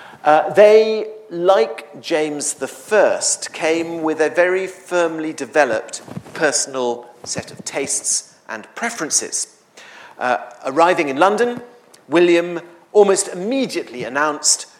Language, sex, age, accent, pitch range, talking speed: English, male, 40-59, British, 150-200 Hz, 100 wpm